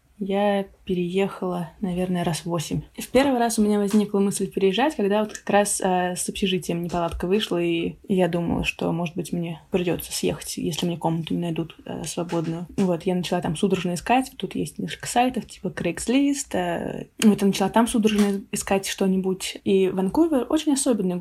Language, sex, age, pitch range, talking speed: Russian, female, 20-39, 180-215 Hz, 170 wpm